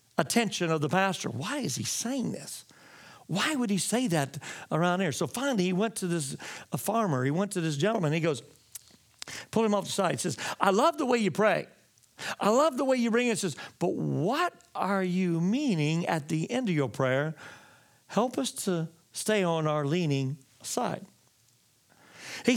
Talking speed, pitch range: 195 wpm, 165-230 Hz